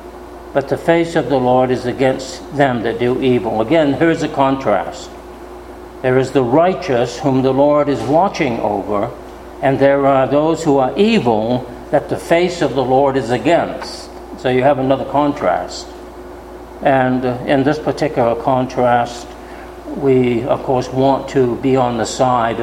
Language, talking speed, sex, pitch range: English, 160 wpm, male, 115-135 Hz